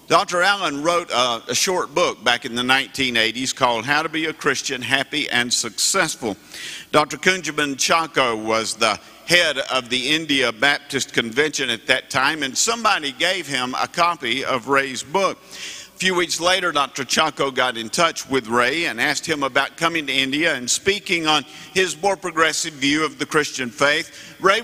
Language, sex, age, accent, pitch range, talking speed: English, male, 50-69, American, 135-175 Hz, 180 wpm